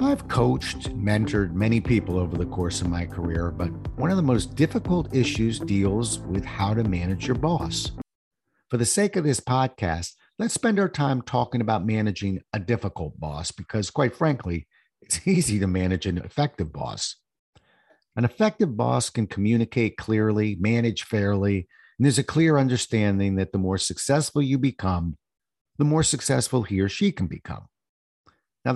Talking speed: 165 wpm